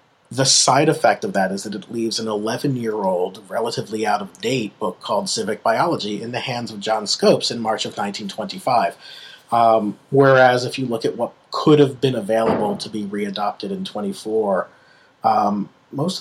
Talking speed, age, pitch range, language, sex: 165 wpm, 40-59, 110-145 Hz, English, male